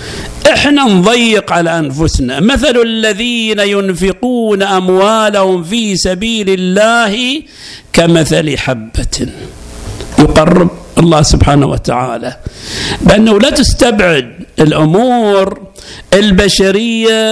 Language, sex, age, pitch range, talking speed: Arabic, male, 50-69, 155-215 Hz, 75 wpm